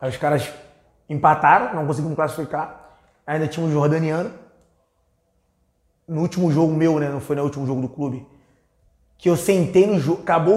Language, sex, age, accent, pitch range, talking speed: Portuguese, male, 20-39, Brazilian, 140-180 Hz, 165 wpm